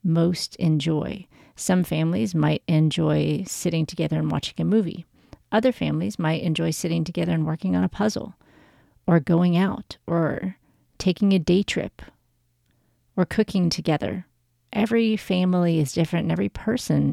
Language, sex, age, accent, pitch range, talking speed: English, female, 40-59, American, 155-195 Hz, 145 wpm